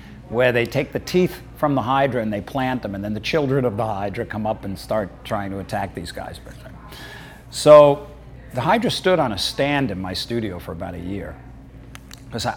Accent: American